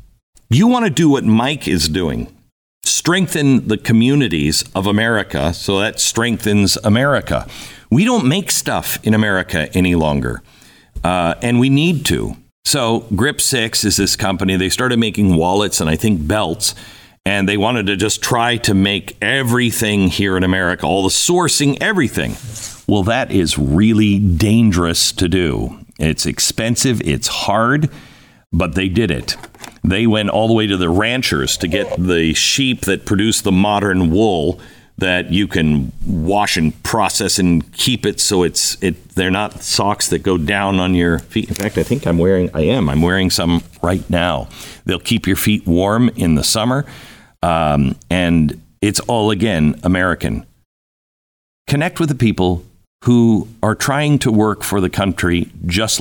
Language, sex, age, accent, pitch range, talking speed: English, male, 50-69, American, 90-115 Hz, 165 wpm